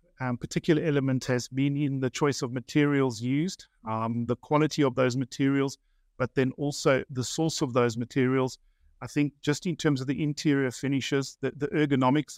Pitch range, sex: 125-145 Hz, male